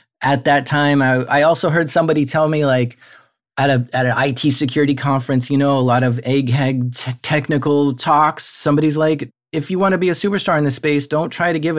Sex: male